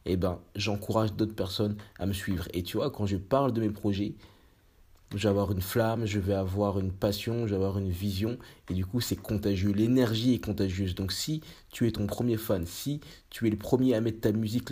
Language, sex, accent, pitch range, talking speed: French, male, French, 100-115 Hz, 230 wpm